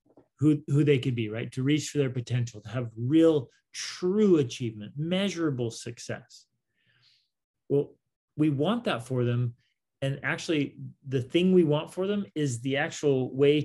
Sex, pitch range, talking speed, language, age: male, 115-145 Hz, 160 wpm, English, 30-49